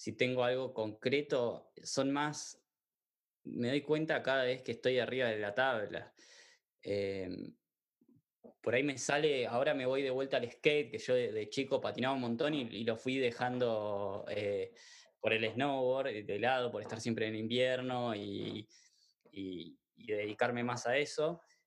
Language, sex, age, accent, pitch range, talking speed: Spanish, male, 20-39, Argentinian, 120-155 Hz, 165 wpm